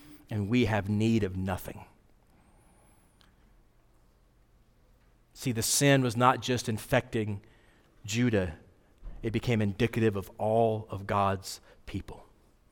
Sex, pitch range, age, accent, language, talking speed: male, 105-145 Hz, 40-59, American, Italian, 105 wpm